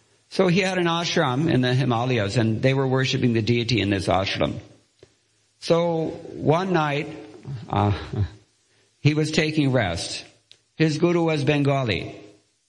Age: 50-69